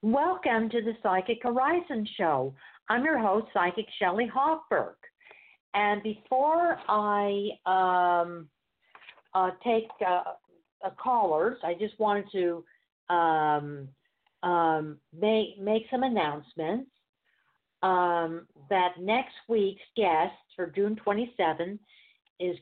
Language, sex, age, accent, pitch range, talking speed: English, female, 50-69, American, 175-225 Hz, 105 wpm